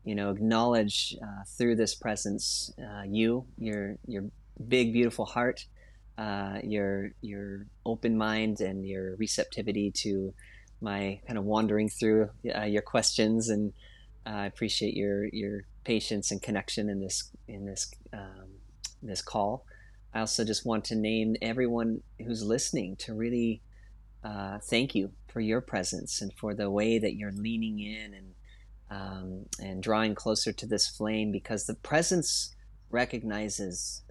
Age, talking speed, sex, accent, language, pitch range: 30-49, 145 wpm, male, American, English, 100-115 Hz